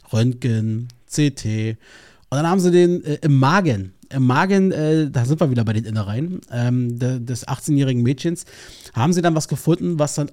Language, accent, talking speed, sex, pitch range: German, German, 180 wpm, male, 125-175 Hz